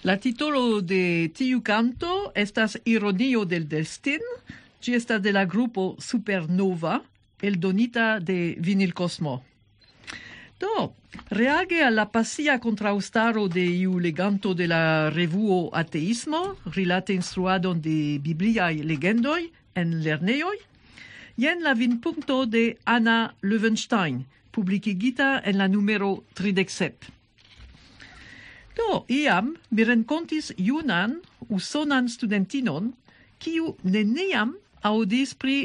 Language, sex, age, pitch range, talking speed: English, female, 50-69, 180-245 Hz, 110 wpm